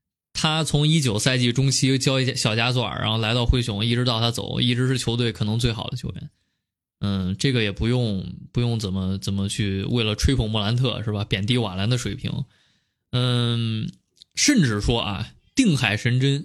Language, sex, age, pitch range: Chinese, male, 20-39, 110-135 Hz